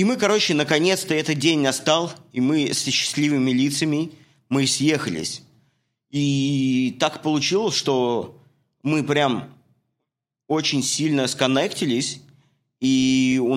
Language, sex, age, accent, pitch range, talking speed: Russian, male, 20-39, native, 120-150 Hz, 110 wpm